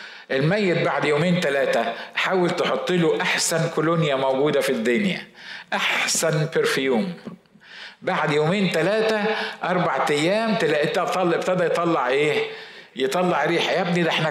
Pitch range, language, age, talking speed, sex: 155-215 Hz, Arabic, 50-69, 120 wpm, male